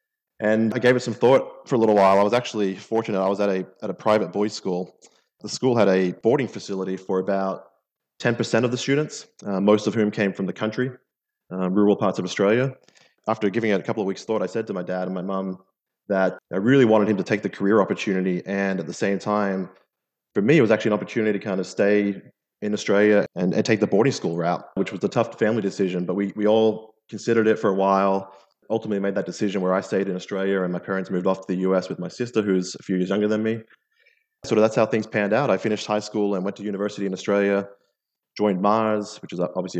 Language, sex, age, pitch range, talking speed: English, male, 20-39, 95-110 Hz, 245 wpm